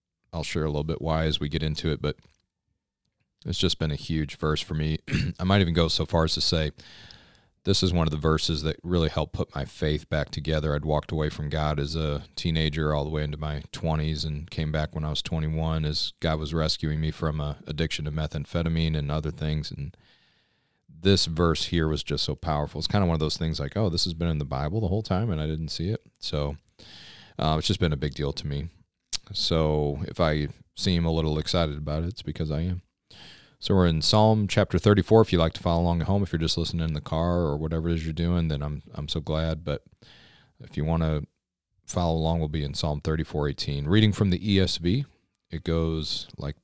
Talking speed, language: 235 wpm, English